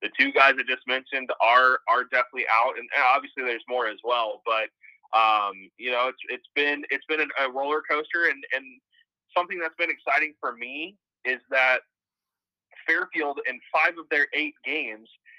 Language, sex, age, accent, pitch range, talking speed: English, male, 20-39, American, 120-155 Hz, 180 wpm